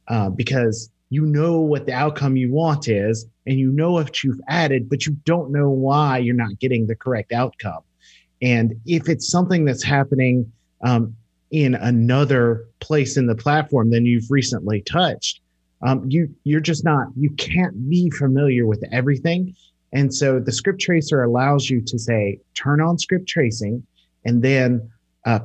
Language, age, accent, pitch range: English, 30-49, American, 115-150 Hz